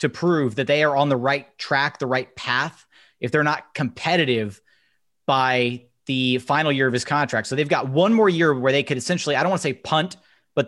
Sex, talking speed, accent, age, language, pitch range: male, 225 wpm, American, 30-49, English, 125-160 Hz